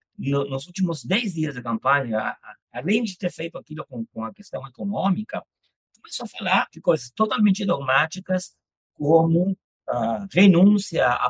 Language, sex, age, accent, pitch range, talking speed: Portuguese, male, 60-79, Brazilian, 140-205 Hz, 140 wpm